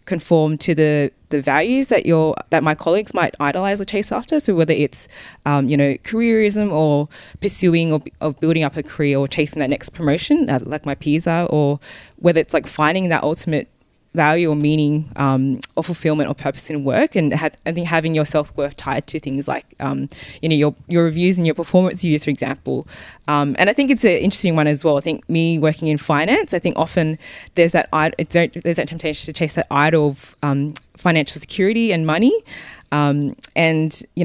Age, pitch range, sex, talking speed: 20-39, 145-170 Hz, female, 210 wpm